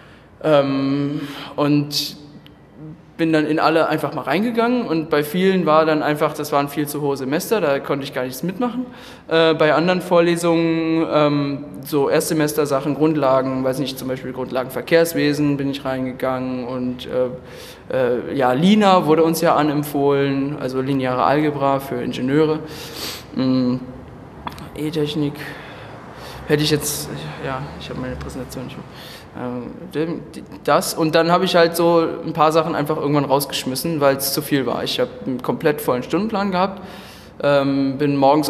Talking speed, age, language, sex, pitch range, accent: 155 wpm, 10-29, German, male, 140-165 Hz, German